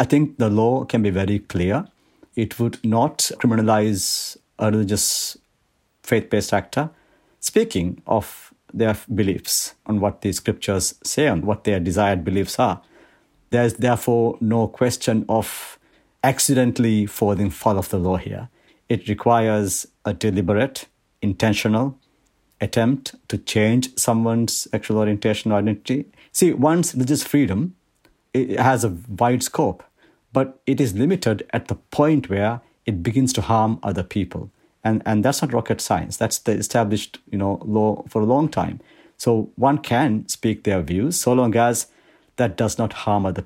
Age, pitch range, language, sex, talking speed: 60-79, 100-125 Hz, English, male, 150 wpm